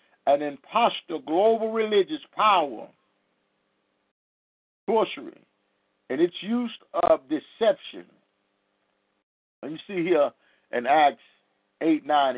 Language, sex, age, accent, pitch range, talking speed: English, male, 50-69, American, 165-235 Hz, 90 wpm